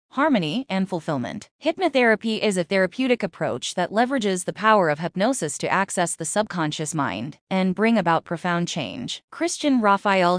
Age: 20-39